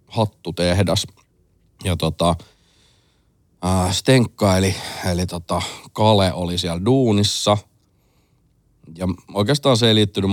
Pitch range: 90-105 Hz